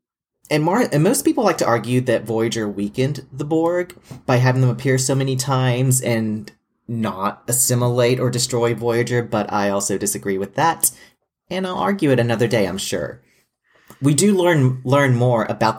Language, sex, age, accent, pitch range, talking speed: English, male, 30-49, American, 110-140 Hz, 175 wpm